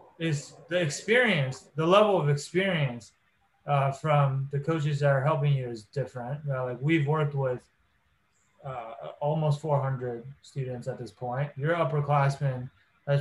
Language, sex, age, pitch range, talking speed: English, male, 20-39, 135-165 Hz, 145 wpm